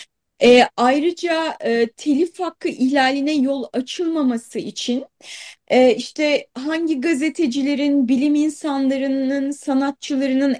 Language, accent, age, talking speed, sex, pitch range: Turkish, native, 30-49, 90 wpm, female, 250-325 Hz